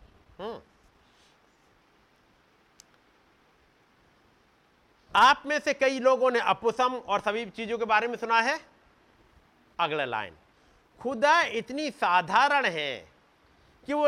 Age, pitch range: 50-69, 165-270 Hz